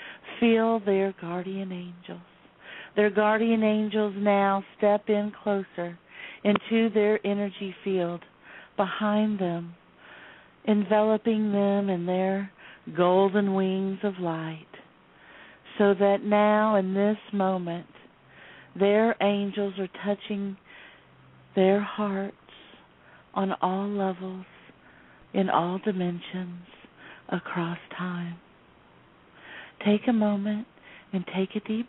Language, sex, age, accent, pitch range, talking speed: English, female, 50-69, American, 180-210 Hz, 100 wpm